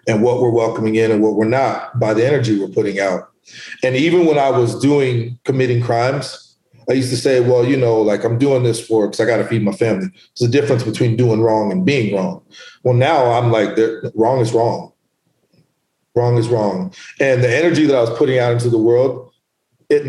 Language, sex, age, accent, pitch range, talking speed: English, male, 40-59, American, 115-135 Hz, 220 wpm